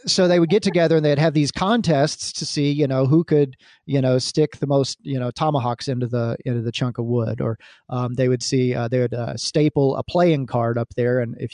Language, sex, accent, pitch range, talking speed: English, male, American, 120-160 Hz, 250 wpm